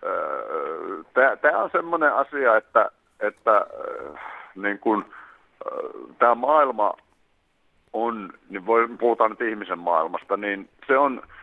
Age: 50-69